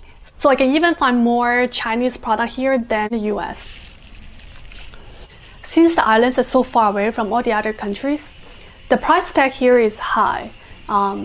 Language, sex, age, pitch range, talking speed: English, female, 20-39, 225-275 Hz, 165 wpm